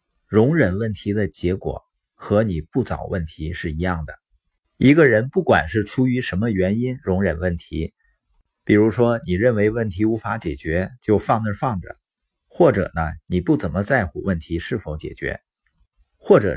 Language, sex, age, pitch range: Chinese, male, 50-69, 90-120 Hz